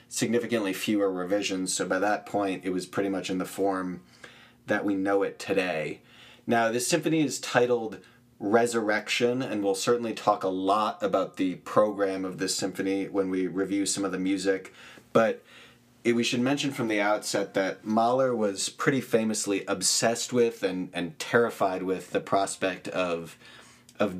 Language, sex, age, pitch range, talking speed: English, male, 30-49, 95-120 Hz, 165 wpm